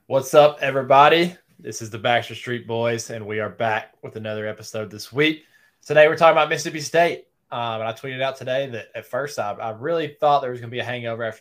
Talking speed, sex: 235 wpm, male